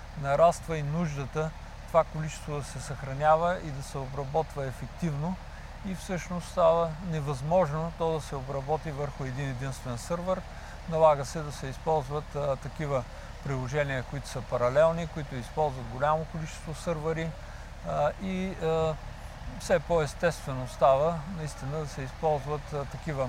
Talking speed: 135 wpm